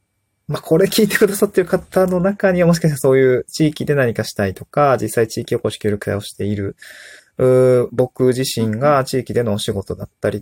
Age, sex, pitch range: 20-39, male, 105-150 Hz